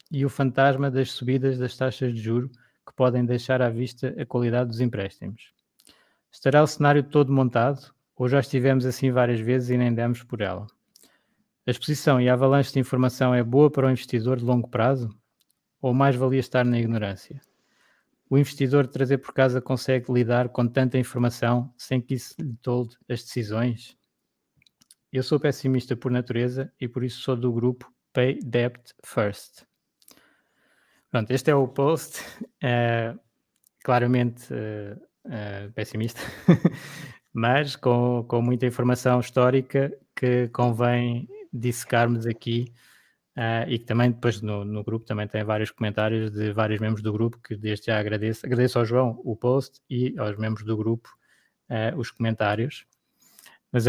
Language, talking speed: Portuguese, 155 wpm